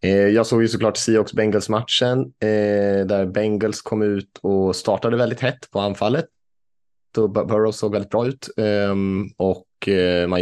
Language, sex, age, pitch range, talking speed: Swedish, male, 20-39, 75-95 Hz, 135 wpm